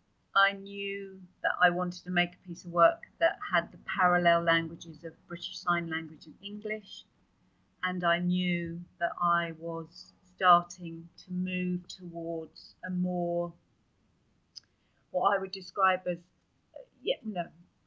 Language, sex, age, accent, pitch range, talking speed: English, female, 40-59, British, 170-190 Hz, 140 wpm